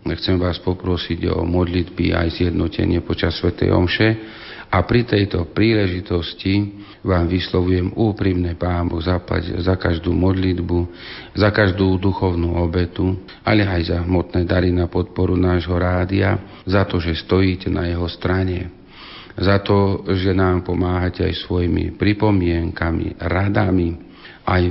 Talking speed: 125 wpm